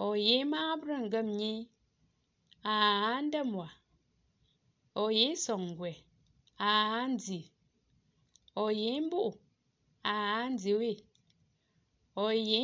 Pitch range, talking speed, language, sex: 175-240 Hz, 55 wpm, English, female